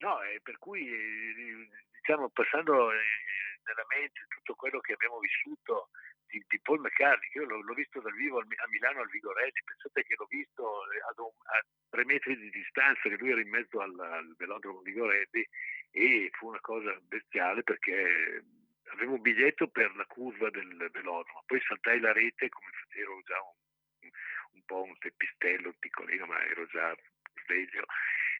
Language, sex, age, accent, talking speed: Italian, male, 60-79, native, 180 wpm